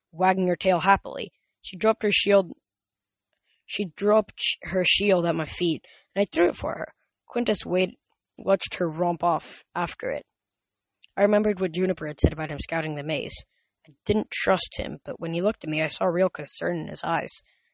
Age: 10-29